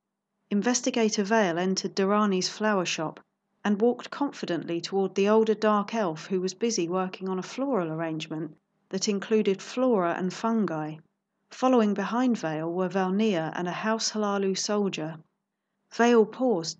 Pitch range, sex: 175-215 Hz, female